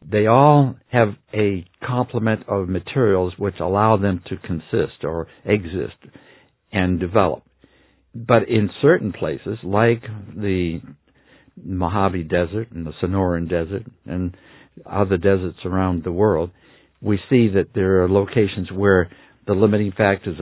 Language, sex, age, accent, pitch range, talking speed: English, male, 60-79, American, 90-115 Hz, 130 wpm